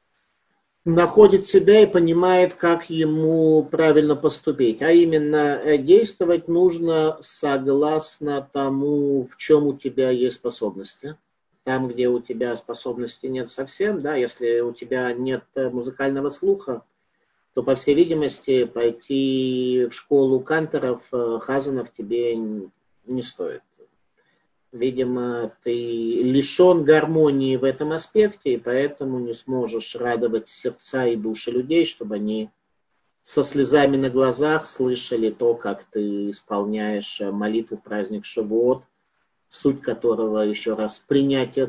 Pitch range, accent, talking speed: 125-160 Hz, native, 120 wpm